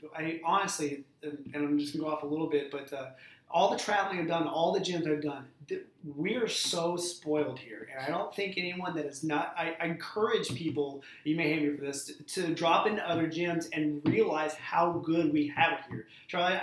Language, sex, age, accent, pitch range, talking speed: English, male, 30-49, American, 150-170 Hz, 225 wpm